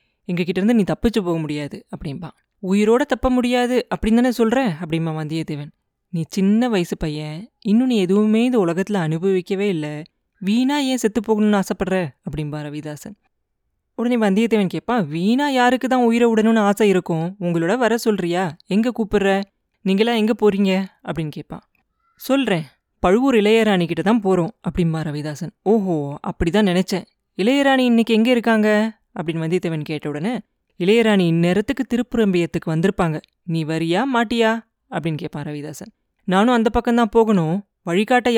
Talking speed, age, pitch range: 135 wpm, 20-39, 175-230 Hz